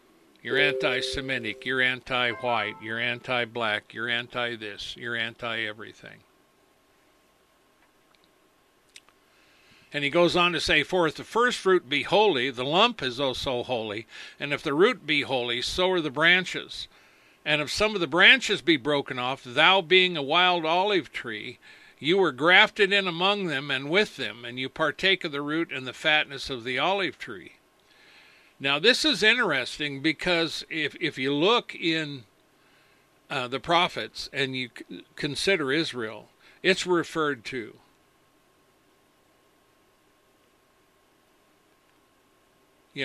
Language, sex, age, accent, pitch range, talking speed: English, male, 60-79, American, 120-175 Hz, 135 wpm